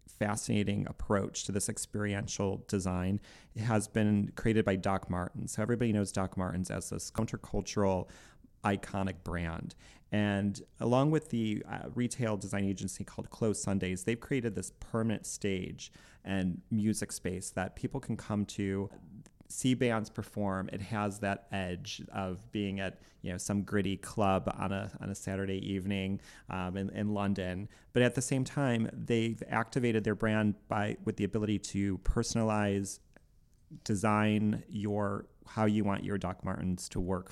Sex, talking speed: male, 155 wpm